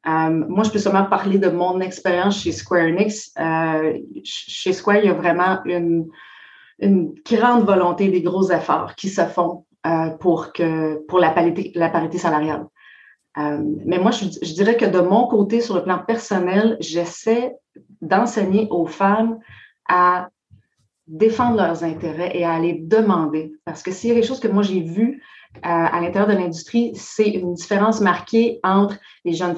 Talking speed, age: 175 wpm, 30-49